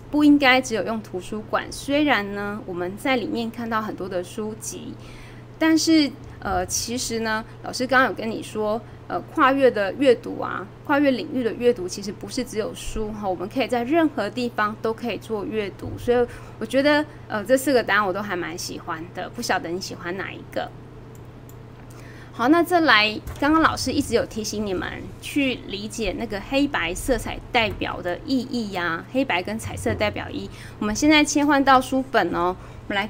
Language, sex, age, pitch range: Chinese, female, 20-39, 170-265 Hz